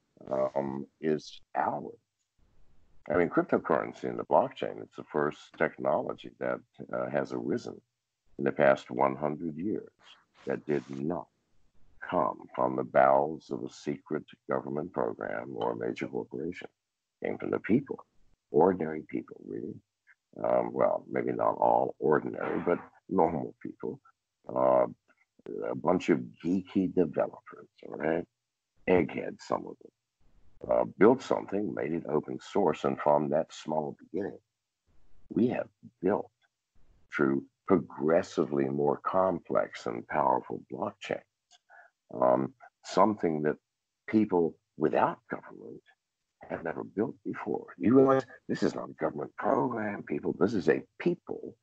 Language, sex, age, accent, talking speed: English, male, 60-79, American, 130 wpm